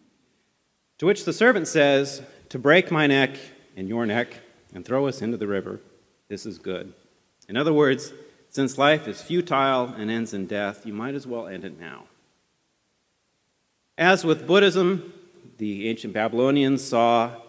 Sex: male